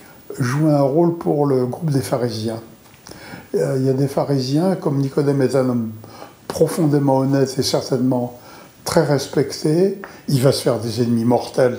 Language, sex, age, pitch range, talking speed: French, male, 60-79, 125-155 Hz, 165 wpm